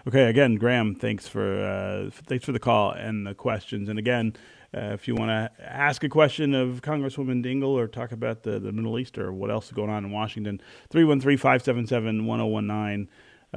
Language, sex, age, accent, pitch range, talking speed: English, male, 30-49, American, 105-125 Hz, 185 wpm